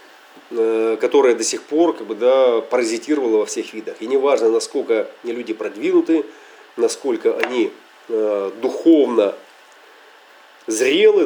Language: Russian